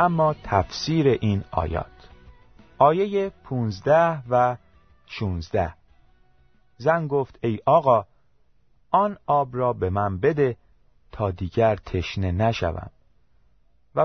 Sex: male